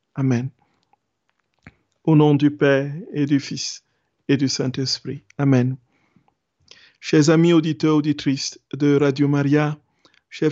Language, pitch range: French, 145-170 Hz